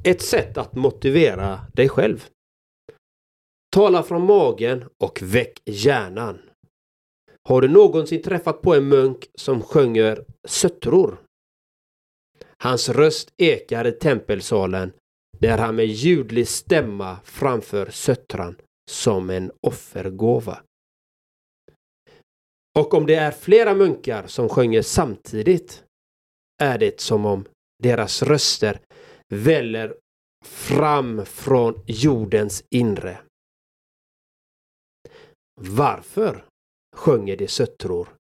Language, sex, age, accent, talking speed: Swedish, male, 40-59, native, 95 wpm